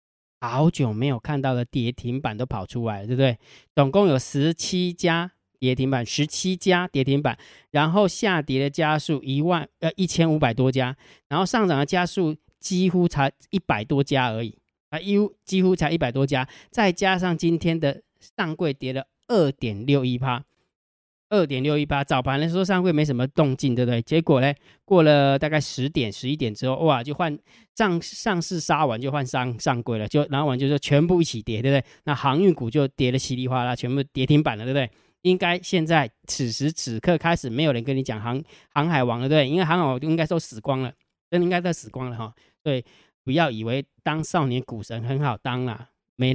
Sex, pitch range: male, 130-170 Hz